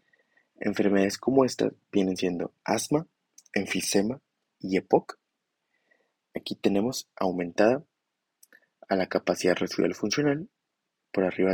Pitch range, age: 95-115 Hz, 20-39